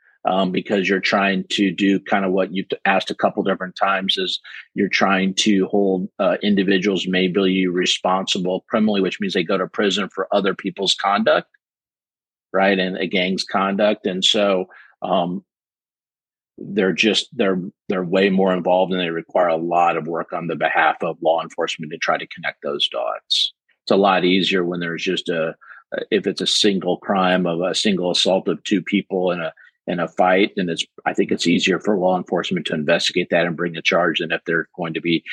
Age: 40-59